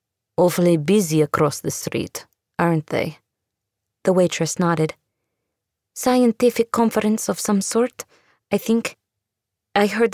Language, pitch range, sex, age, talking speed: English, 120-190 Hz, female, 20-39, 110 wpm